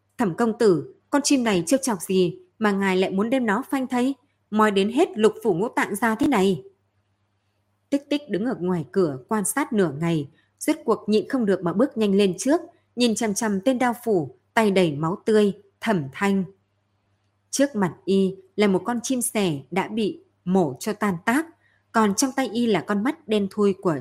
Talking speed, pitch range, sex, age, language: 205 wpm, 165-230 Hz, female, 20-39, Vietnamese